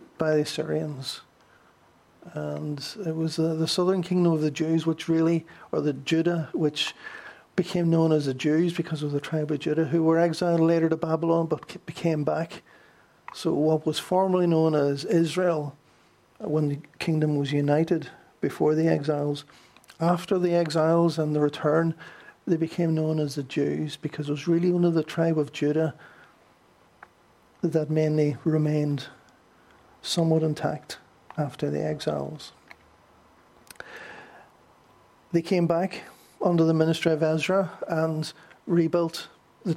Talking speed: 140 wpm